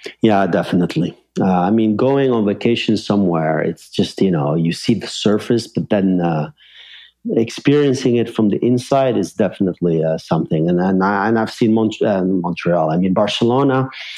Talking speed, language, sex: 175 wpm, English, male